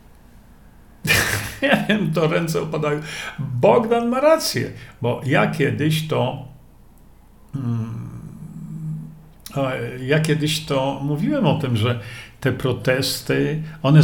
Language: Polish